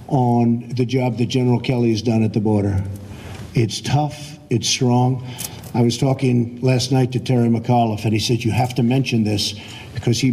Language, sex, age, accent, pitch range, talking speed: English, male, 50-69, American, 115-140 Hz, 190 wpm